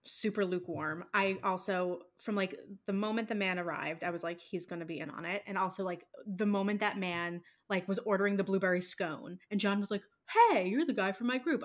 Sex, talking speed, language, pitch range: female, 225 wpm, English, 180-225 Hz